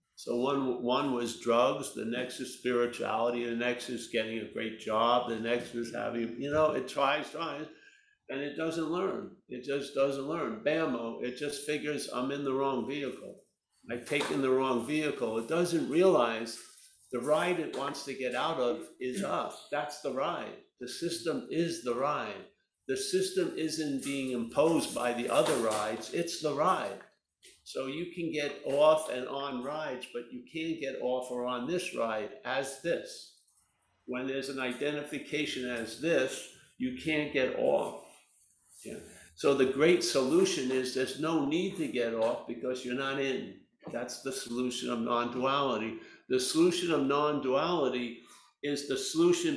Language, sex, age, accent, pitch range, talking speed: English, male, 60-79, American, 125-160 Hz, 165 wpm